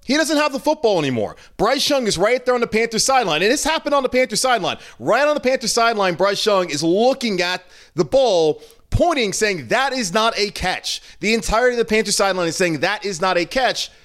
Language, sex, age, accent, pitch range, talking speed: English, male, 30-49, American, 155-220 Hz, 230 wpm